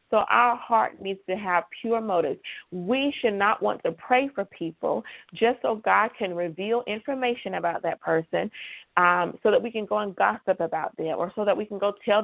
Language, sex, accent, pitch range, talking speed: English, female, American, 190-230 Hz, 205 wpm